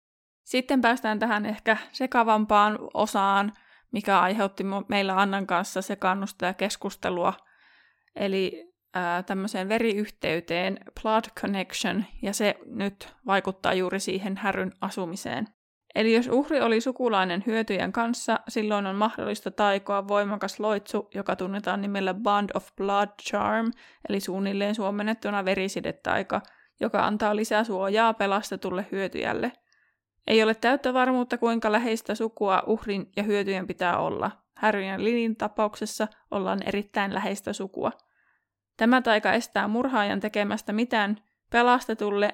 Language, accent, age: Finnish, native, 20-39